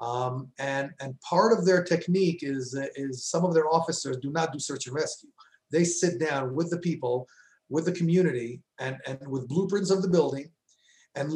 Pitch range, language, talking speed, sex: 135-180 Hz, English, 195 wpm, male